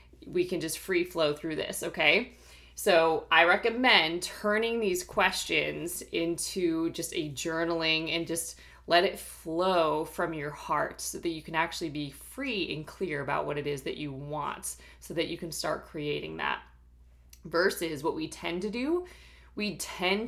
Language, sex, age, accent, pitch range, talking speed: English, female, 20-39, American, 145-180 Hz, 170 wpm